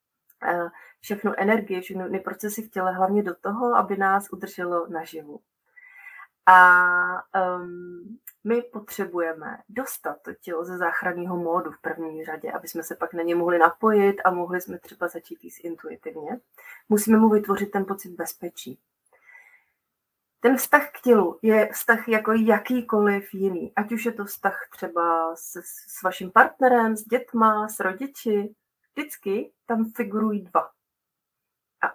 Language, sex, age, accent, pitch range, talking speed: Czech, female, 30-49, native, 185-230 Hz, 140 wpm